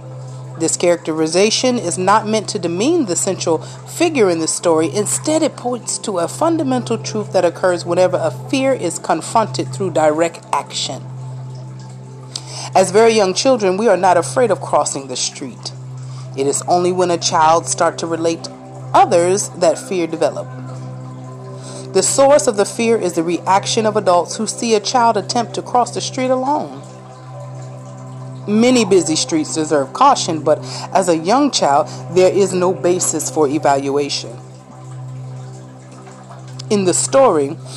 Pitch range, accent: 130-200 Hz, American